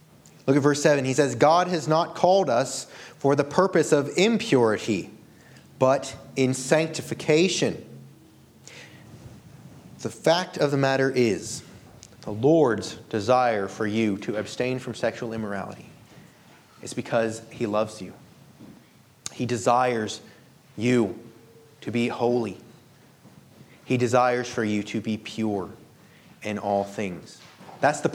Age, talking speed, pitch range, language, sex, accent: 30-49, 125 wpm, 120-155 Hz, English, male, American